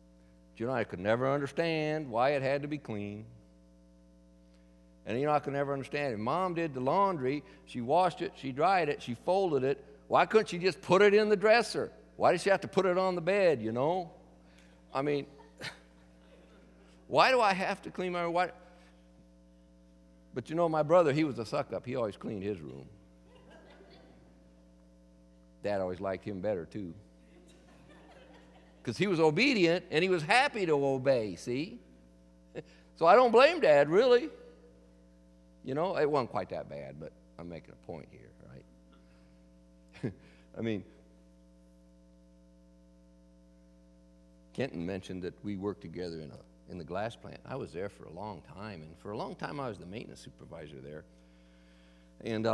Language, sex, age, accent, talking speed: English, male, 60-79, American, 170 wpm